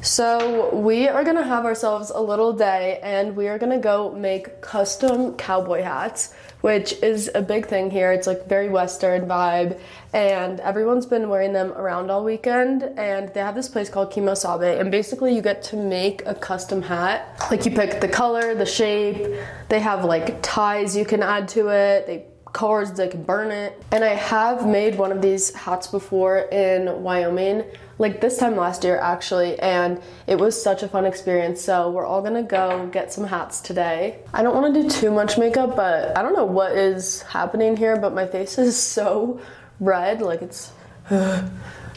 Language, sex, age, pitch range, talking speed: English, female, 20-39, 185-215 Hz, 190 wpm